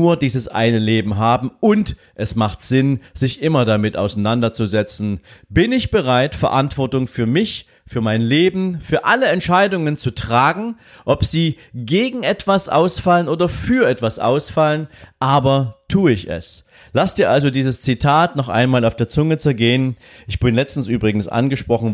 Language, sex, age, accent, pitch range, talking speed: German, male, 40-59, German, 110-140 Hz, 155 wpm